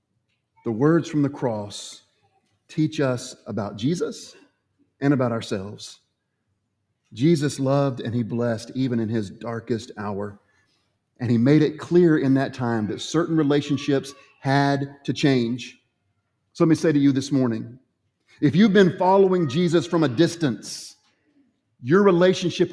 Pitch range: 115-170 Hz